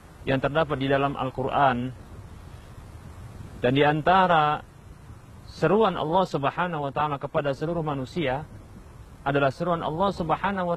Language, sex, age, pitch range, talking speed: Indonesian, male, 50-69, 115-175 Hz, 115 wpm